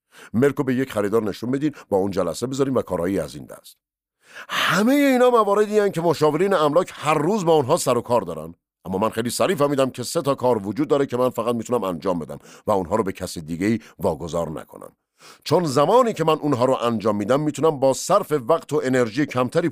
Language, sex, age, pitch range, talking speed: Persian, male, 50-69, 115-155 Hz, 220 wpm